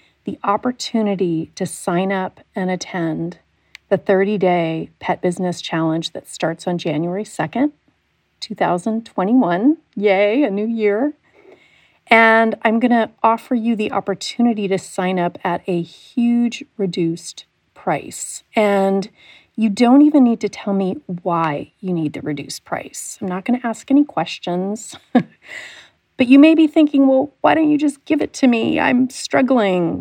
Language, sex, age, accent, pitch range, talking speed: English, female, 40-59, American, 180-235 Hz, 150 wpm